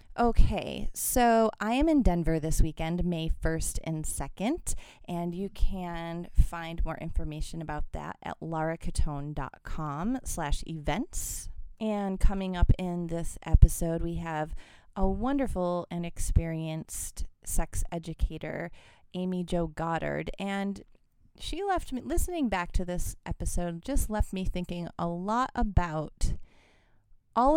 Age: 30-49